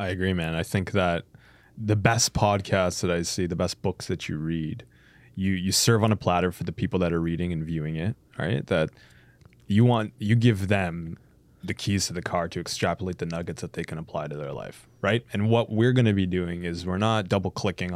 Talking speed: 225 wpm